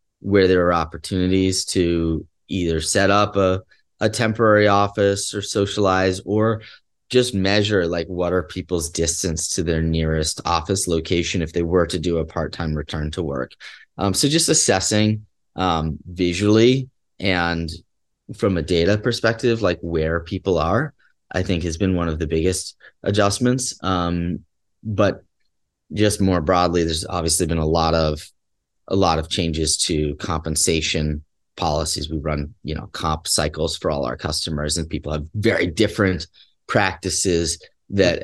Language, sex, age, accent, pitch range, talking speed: English, male, 30-49, American, 80-100 Hz, 150 wpm